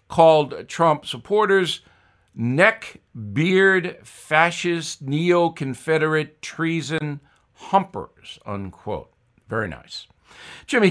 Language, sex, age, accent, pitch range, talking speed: English, male, 60-79, American, 125-165 Hz, 70 wpm